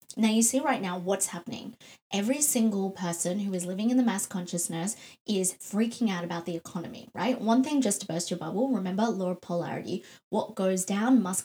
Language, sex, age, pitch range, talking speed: English, female, 20-39, 185-225 Hz, 205 wpm